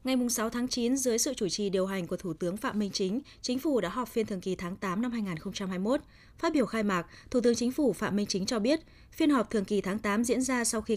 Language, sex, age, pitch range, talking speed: Vietnamese, female, 20-39, 190-250 Hz, 275 wpm